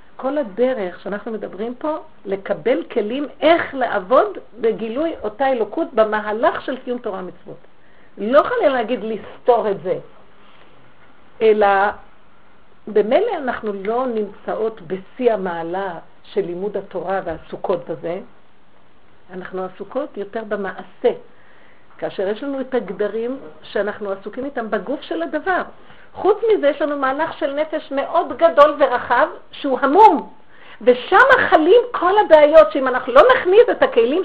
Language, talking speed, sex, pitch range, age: Hebrew, 125 wpm, female, 205-305 Hz, 50-69